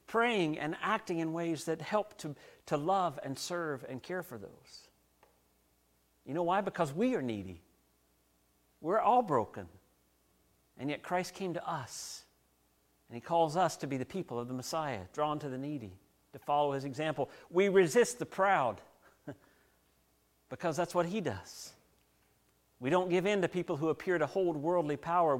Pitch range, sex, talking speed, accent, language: 120-195 Hz, male, 170 wpm, American, English